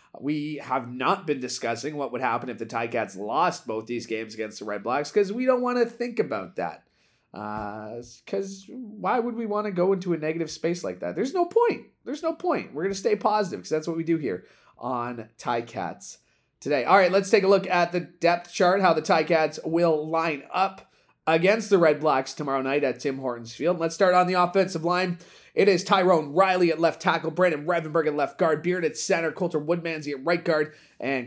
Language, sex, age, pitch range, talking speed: English, male, 30-49, 130-180 Hz, 220 wpm